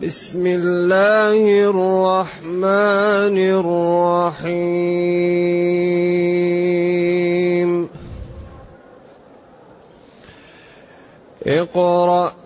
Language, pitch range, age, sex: Arabic, 175-215 Hz, 30-49, male